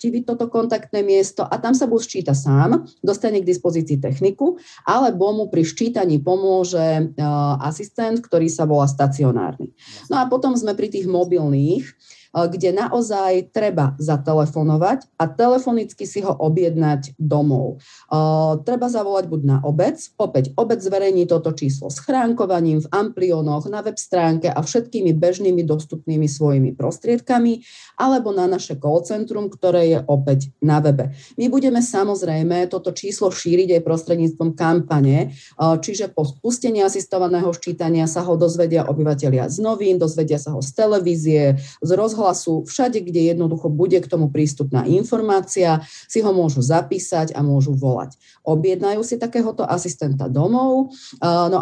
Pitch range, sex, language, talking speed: 155-210 Hz, female, Slovak, 140 wpm